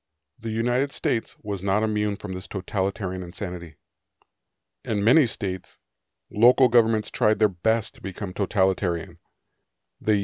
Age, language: 40-59, English